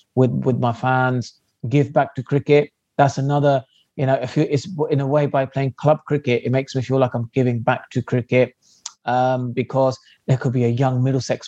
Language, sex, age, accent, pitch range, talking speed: English, male, 30-49, British, 120-140 Hz, 210 wpm